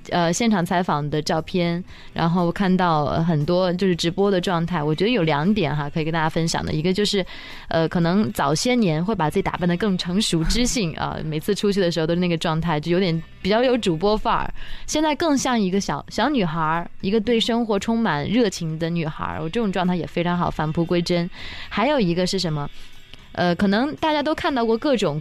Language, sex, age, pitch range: Chinese, female, 20-39, 170-215 Hz